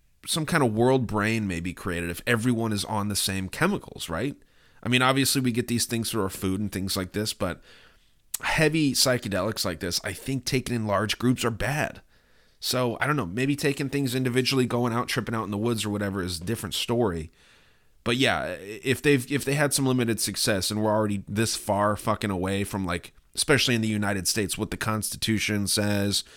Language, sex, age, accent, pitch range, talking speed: English, male, 30-49, American, 95-120 Hz, 210 wpm